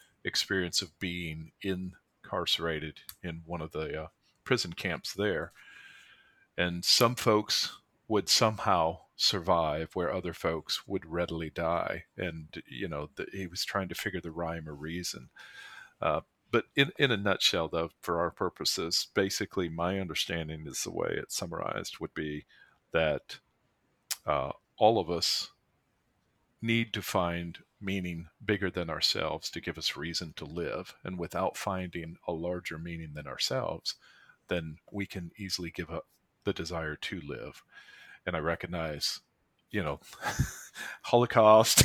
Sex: male